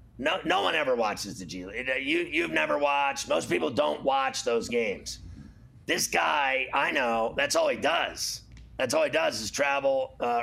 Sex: male